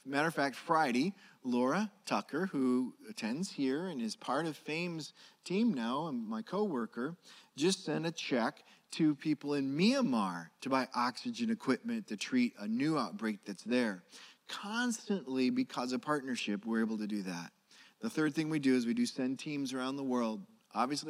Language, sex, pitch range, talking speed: English, male, 130-185 Hz, 175 wpm